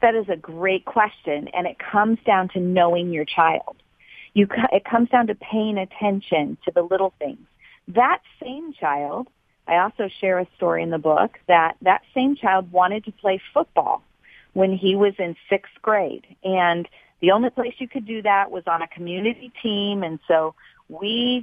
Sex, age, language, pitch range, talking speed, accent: female, 40-59, English, 180-230 Hz, 180 wpm, American